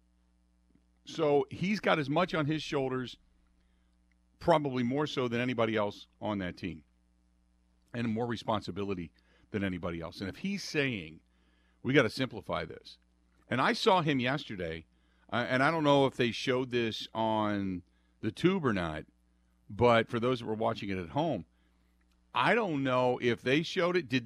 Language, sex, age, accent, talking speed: English, male, 50-69, American, 170 wpm